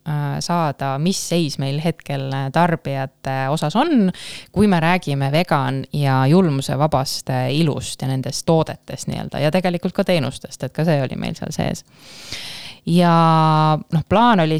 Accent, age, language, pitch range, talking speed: Finnish, 20-39, English, 140-175 Hz, 140 wpm